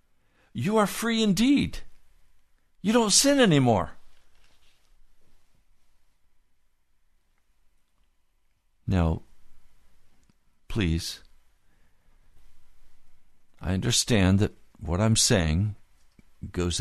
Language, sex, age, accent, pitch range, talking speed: English, male, 60-79, American, 75-115 Hz, 60 wpm